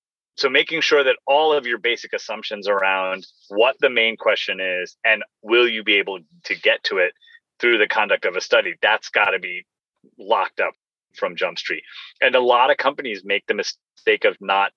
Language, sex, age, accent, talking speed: English, male, 30-49, American, 195 wpm